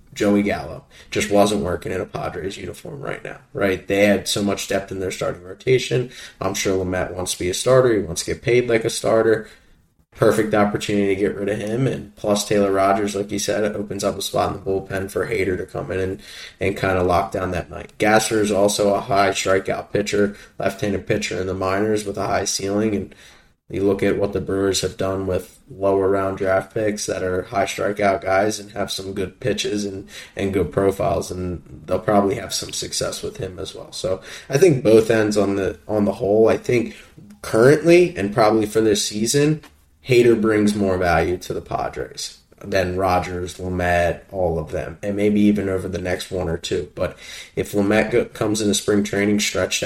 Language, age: English, 20-39